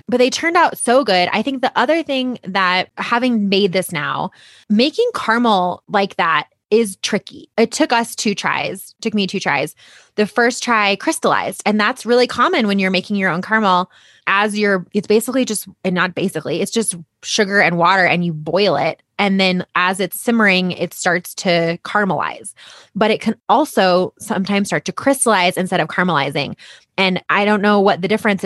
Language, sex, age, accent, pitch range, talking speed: English, female, 20-39, American, 180-225 Hz, 190 wpm